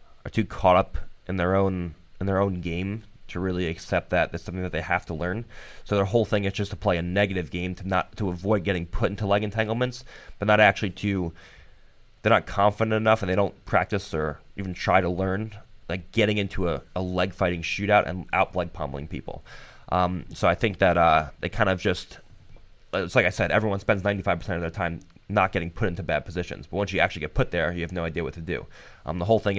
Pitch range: 85-100 Hz